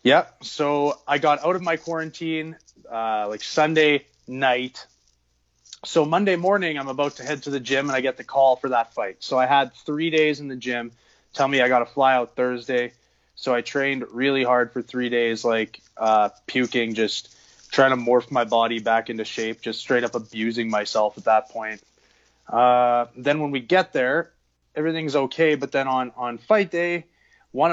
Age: 20-39